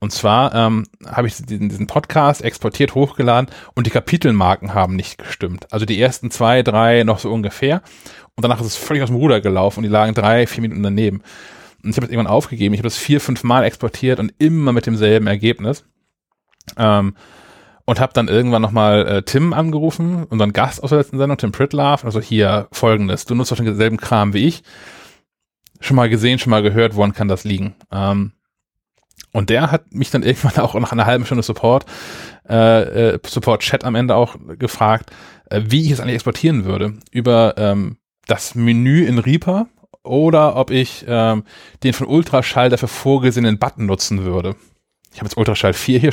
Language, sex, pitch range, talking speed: German, male, 105-130 Hz, 185 wpm